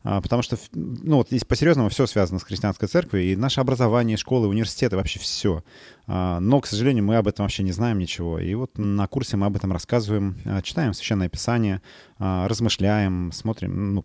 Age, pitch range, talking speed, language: 30-49, 95-120 Hz, 175 wpm, Russian